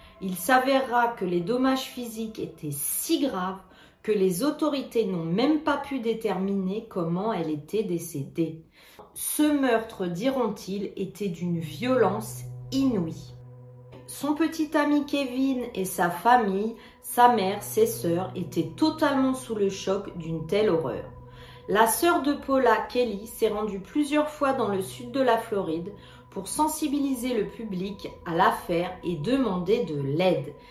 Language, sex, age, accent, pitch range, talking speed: French, female, 40-59, French, 180-260 Hz, 140 wpm